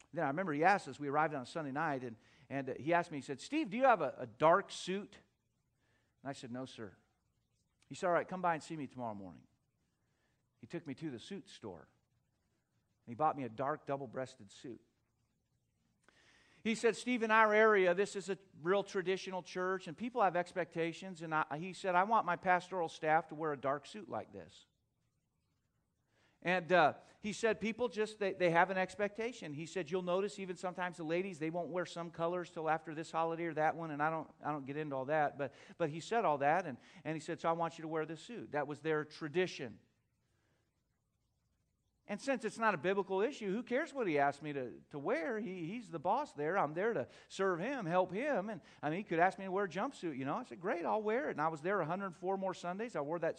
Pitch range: 145-190 Hz